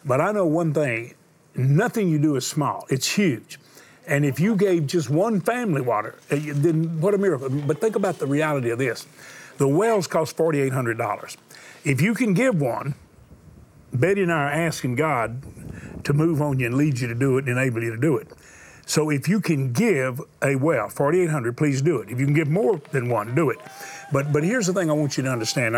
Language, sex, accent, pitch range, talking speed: English, male, American, 130-165 Hz, 215 wpm